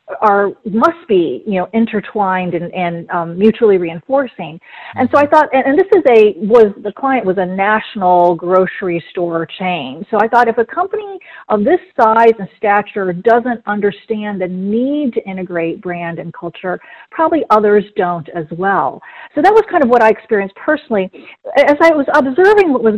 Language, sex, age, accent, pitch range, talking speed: English, female, 40-59, American, 185-260 Hz, 180 wpm